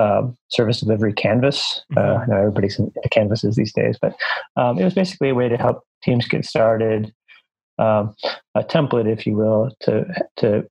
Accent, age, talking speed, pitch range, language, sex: American, 30-49, 175 wpm, 110-130 Hz, English, male